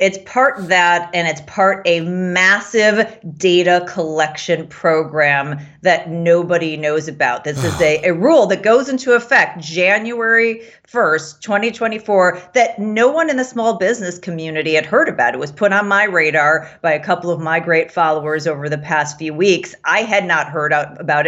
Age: 40-59